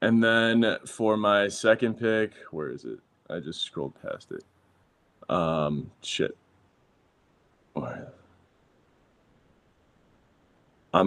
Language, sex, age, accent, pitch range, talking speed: English, male, 20-39, American, 85-110 Hz, 100 wpm